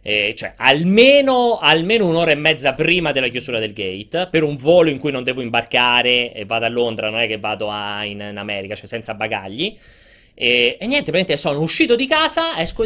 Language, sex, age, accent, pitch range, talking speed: Italian, male, 30-49, native, 120-175 Hz, 200 wpm